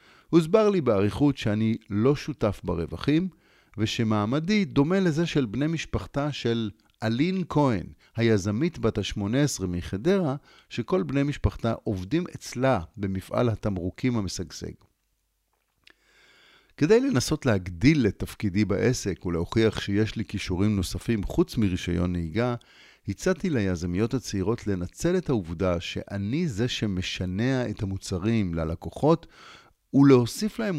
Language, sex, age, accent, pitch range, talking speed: Hebrew, male, 50-69, native, 100-145 Hz, 110 wpm